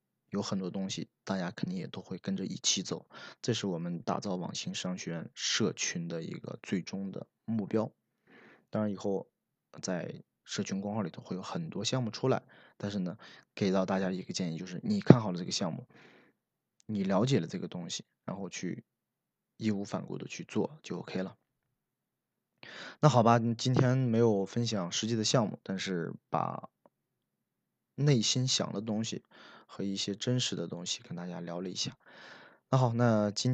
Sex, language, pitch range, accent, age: male, Chinese, 95-115 Hz, native, 20-39